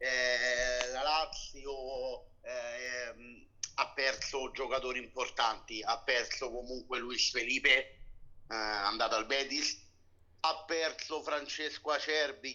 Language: Italian